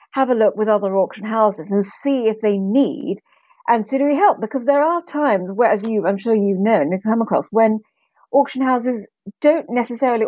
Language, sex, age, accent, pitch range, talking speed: English, female, 40-59, British, 195-250 Hz, 195 wpm